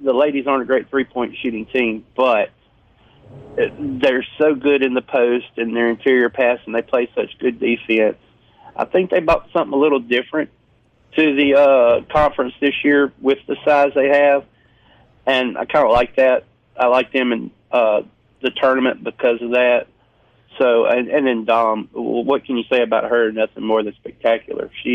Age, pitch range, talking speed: 40-59, 120-145 Hz, 185 wpm